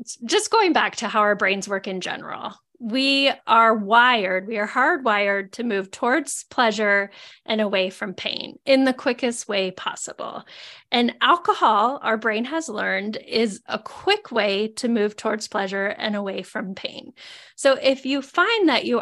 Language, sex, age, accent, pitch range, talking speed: English, female, 10-29, American, 210-260 Hz, 165 wpm